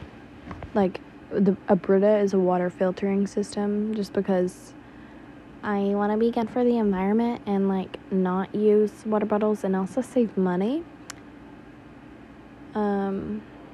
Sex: female